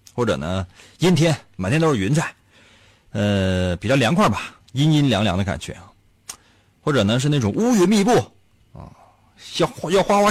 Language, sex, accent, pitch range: Chinese, male, native, 105-165 Hz